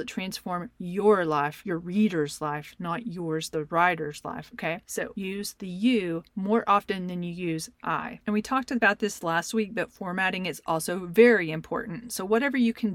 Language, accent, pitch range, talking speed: English, American, 175-225 Hz, 180 wpm